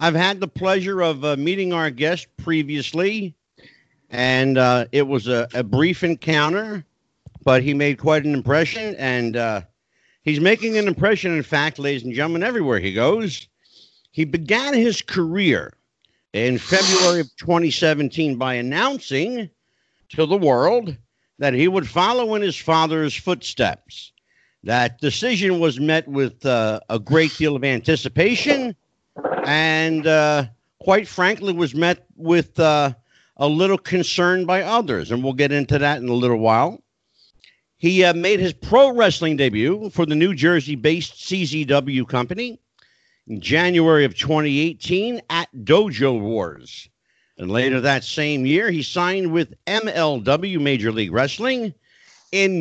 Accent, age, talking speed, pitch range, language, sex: American, 50-69, 145 wpm, 135-180 Hz, English, male